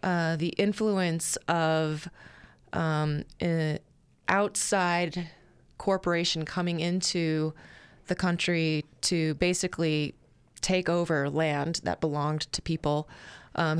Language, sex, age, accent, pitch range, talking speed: English, female, 20-39, American, 155-180 Hz, 95 wpm